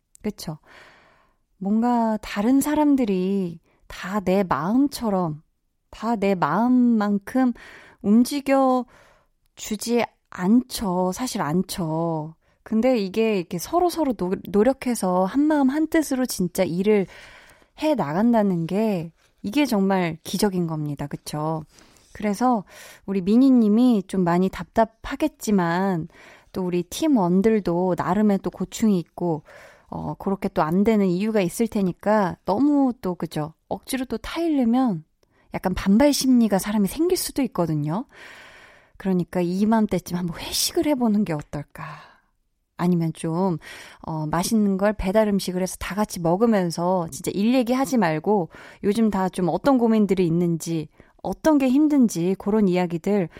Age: 20-39